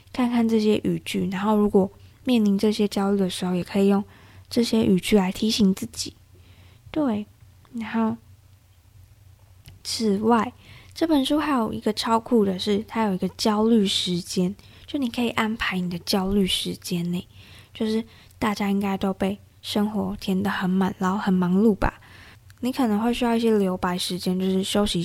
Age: 20-39